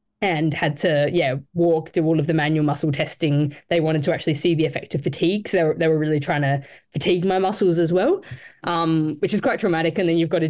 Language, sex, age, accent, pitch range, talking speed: English, female, 10-29, Australian, 155-180 Hz, 250 wpm